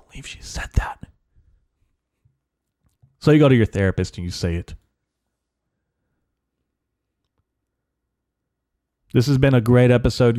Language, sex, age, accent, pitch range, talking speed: English, male, 30-49, American, 95-125 Hz, 115 wpm